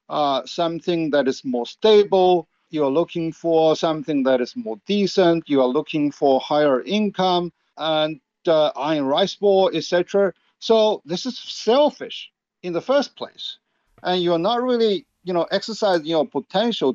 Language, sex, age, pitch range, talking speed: English, male, 50-69, 150-195 Hz, 150 wpm